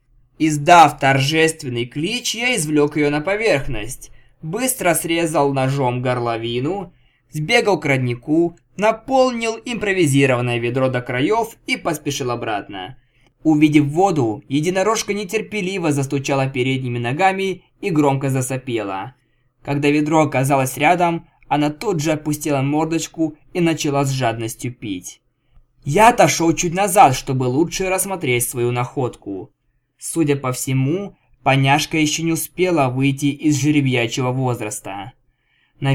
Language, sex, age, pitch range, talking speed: Russian, male, 20-39, 125-165 Hz, 115 wpm